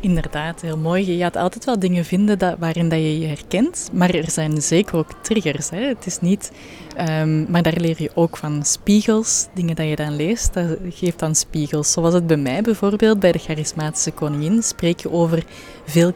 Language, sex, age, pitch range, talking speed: Dutch, female, 20-39, 160-195 Hz, 205 wpm